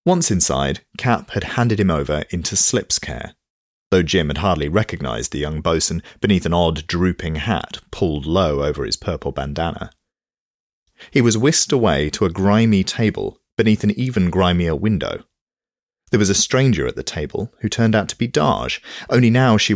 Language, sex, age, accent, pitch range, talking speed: English, male, 40-59, British, 80-105 Hz, 175 wpm